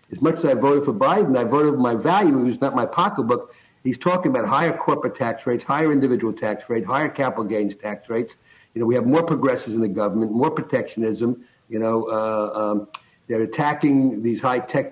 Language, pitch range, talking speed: English, 120-155 Hz, 205 wpm